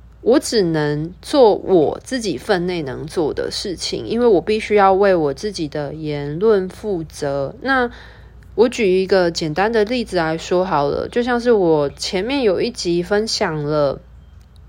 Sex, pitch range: female, 155-220 Hz